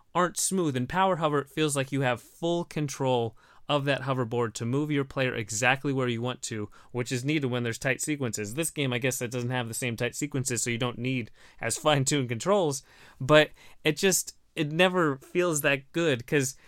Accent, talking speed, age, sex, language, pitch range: American, 210 wpm, 20-39, male, English, 125-150 Hz